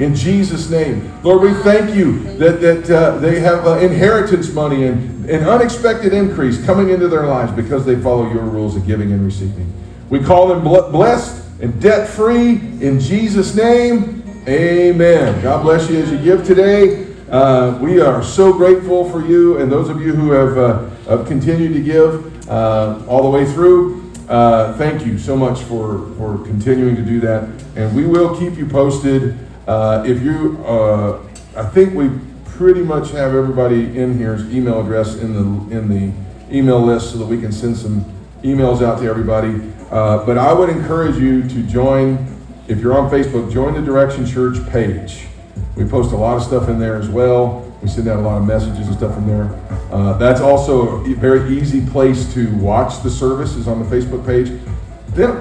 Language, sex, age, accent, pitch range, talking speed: English, male, 40-59, American, 110-160 Hz, 190 wpm